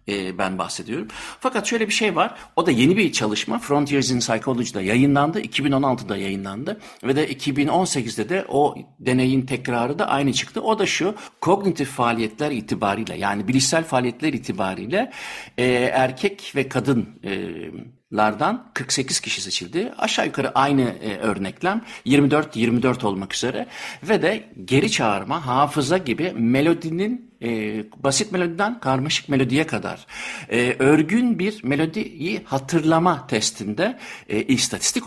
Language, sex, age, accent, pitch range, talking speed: Turkish, male, 60-79, native, 115-160 Hz, 120 wpm